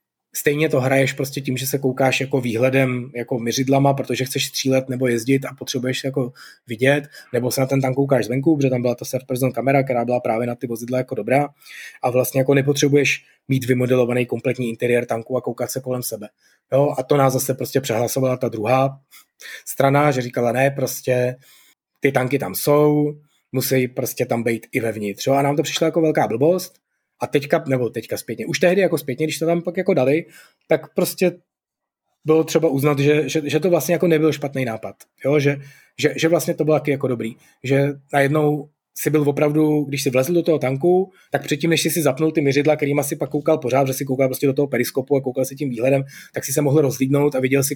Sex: male